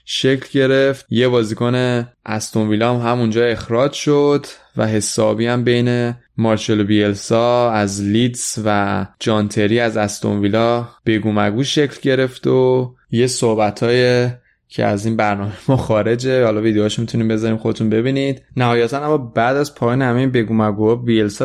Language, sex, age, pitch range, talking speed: Persian, male, 20-39, 110-125 Hz, 140 wpm